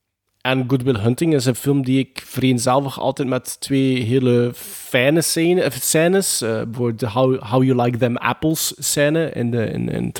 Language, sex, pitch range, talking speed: Dutch, male, 125-165 Hz, 155 wpm